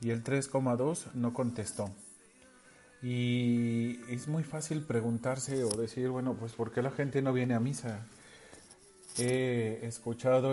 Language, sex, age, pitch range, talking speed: Spanish, male, 40-59, 115-140 Hz, 135 wpm